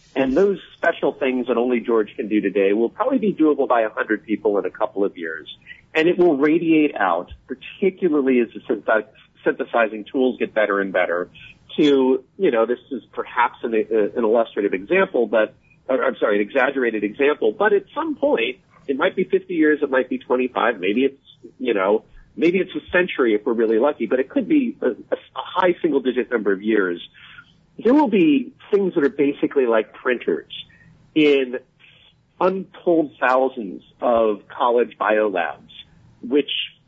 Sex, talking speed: male, 175 wpm